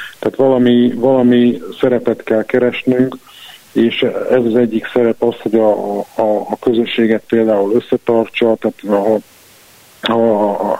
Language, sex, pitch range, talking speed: Hungarian, male, 110-120 Hz, 115 wpm